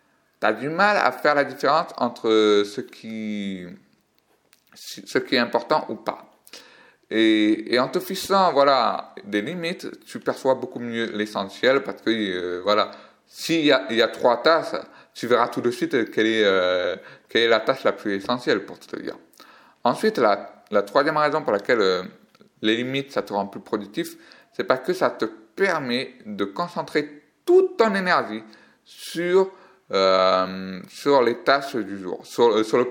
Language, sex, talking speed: French, male, 170 wpm